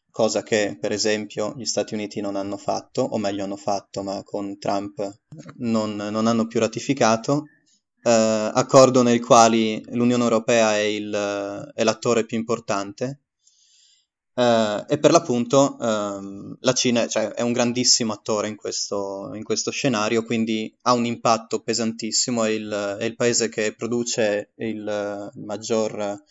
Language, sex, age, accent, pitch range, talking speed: Italian, male, 20-39, native, 105-125 Hz, 150 wpm